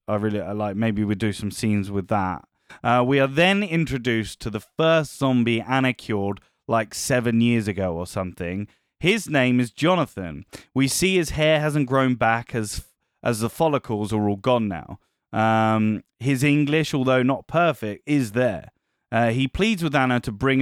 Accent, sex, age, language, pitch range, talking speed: British, male, 20-39, English, 110-135 Hz, 180 wpm